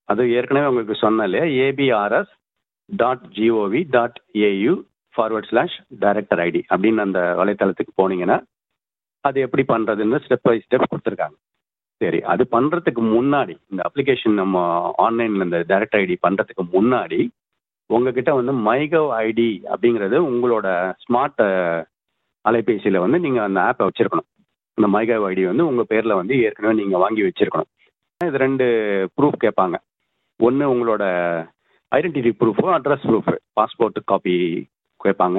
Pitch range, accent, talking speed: 95-130 Hz, native, 115 wpm